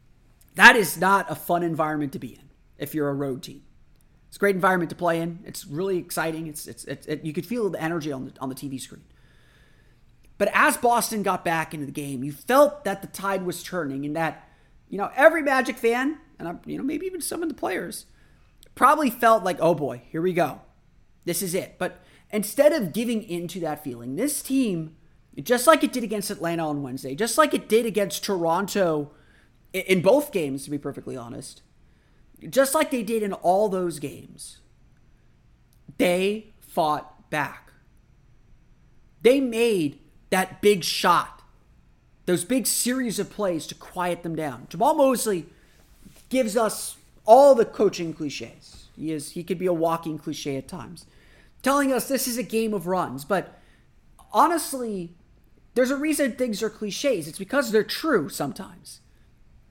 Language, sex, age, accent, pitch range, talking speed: English, male, 30-49, American, 160-235 Hz, 175 wpm